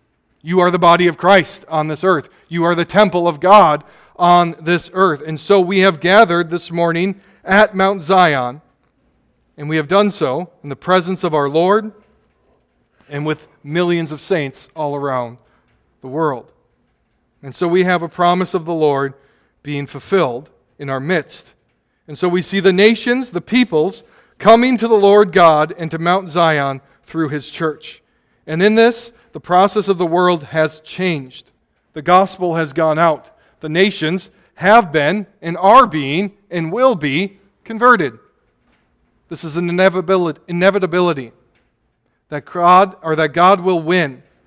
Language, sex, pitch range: English, male, 150-185 Hz